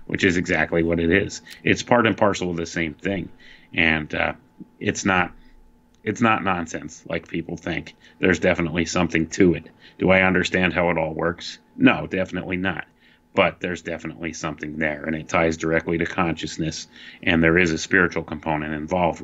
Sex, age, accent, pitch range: male, 30-49, American, 80-95 Hz